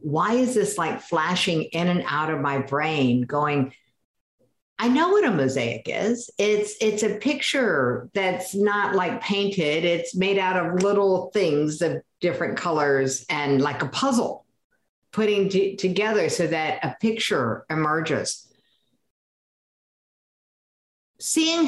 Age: 50-69